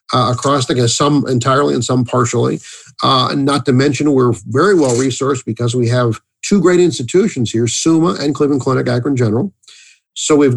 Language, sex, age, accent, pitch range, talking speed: English, male, 50-69, American, 120-150 Hz, 175 wpm